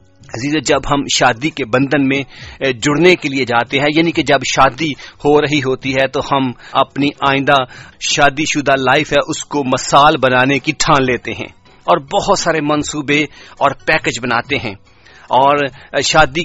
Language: English